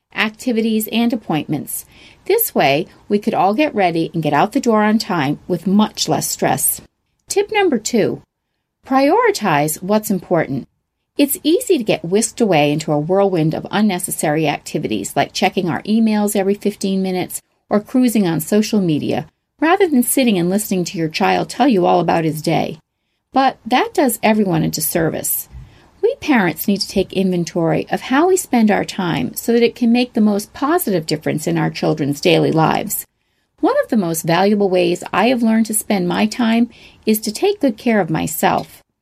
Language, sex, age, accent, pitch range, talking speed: English, female, 40-59, American, 180-235 Hz, 180 wpm